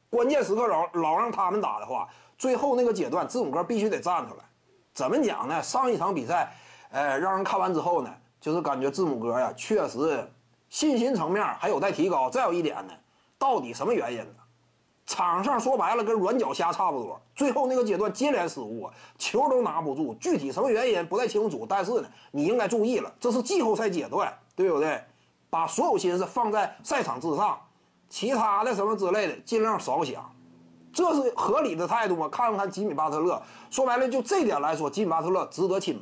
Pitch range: 200-295 Hz